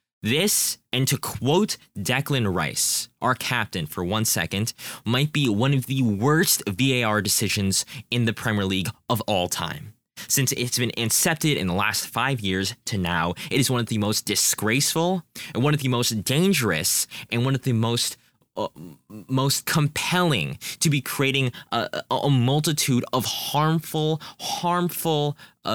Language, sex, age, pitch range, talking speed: English, male, 20-39, 110-145 Hz, 155 wpm